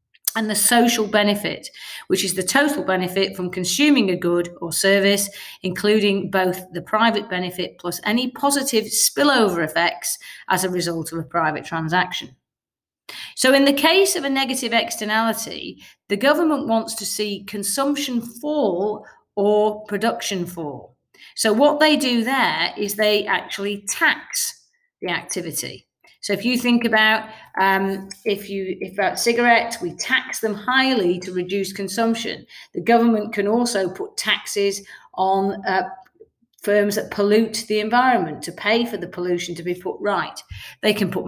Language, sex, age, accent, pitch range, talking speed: English, female, 40-59, British, 190-240 Hz, 150 wpm